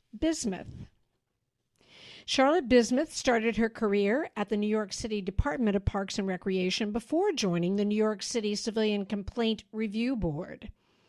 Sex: female